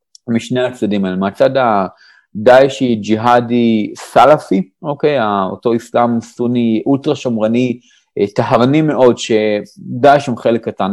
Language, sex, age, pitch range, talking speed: Hebrew, male, 30-49, 110-140 Hz, 100 wpm